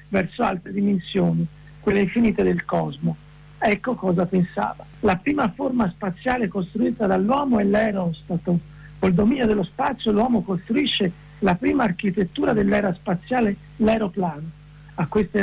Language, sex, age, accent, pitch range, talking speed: Italian, male, 50-69, native, 175-220 Hz, 125 wpm